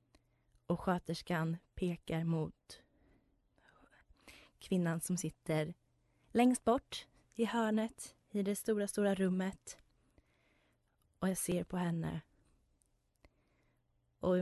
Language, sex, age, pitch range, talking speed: Swedish, female, 20-39, 145-190 Hz, 90 wpm